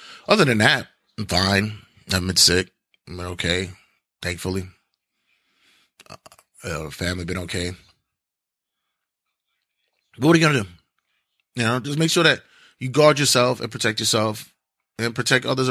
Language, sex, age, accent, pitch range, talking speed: English, male, 30-49, American, 90-140 Hz, 140 wpm